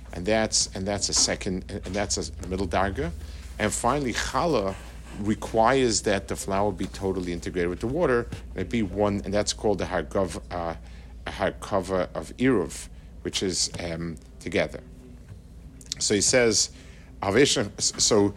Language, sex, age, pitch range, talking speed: English, male, 50-69, 85-120 Hz, 140 wpm